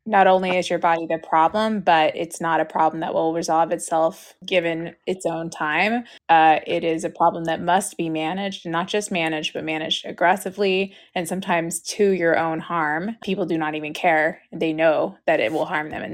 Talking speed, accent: 200 wpm, American